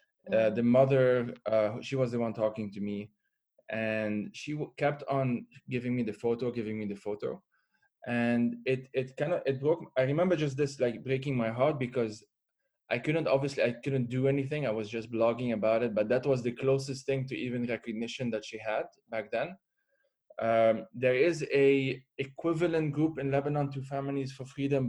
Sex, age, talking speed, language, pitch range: male, 20-39, 190 wpm, English, 120-140 Hz